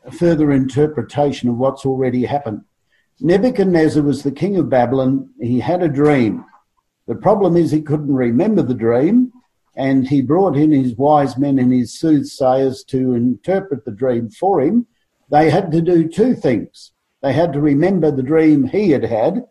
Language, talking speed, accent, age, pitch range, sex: English, 170 wpm, Australian, 50-69, 130-165 Hz, male